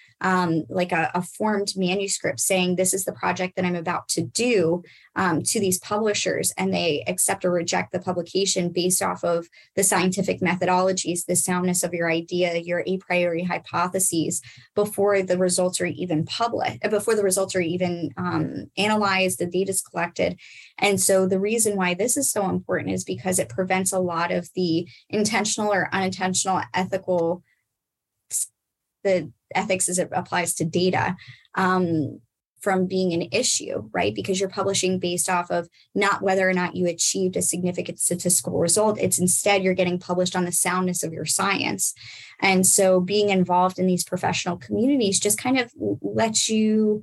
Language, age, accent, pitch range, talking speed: English, 20-39, American, 175-195 Hz, 170 wpm